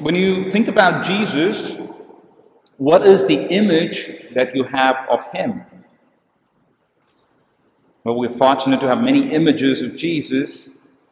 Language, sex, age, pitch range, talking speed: English, male, 50-69, 130-170 Hz, 125 wpm